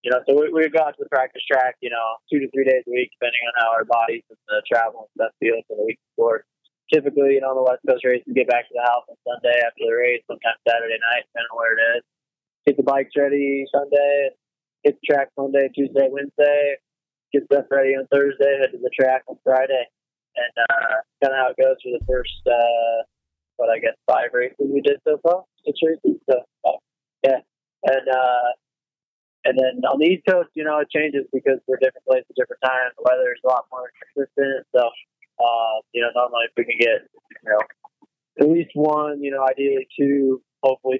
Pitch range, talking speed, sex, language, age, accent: 125-150 Hz, 220 wpm, male, English, 20-39, American